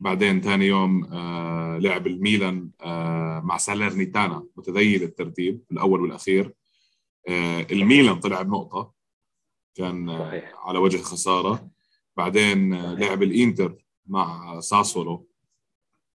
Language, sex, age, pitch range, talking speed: Arabic, male, 20-39, 85-105 Hz, 110 wpm